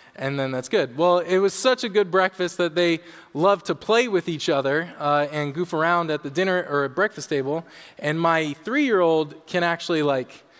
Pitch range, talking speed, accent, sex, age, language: 155-205 Hz, 205 wpm, American, male, 20-39, English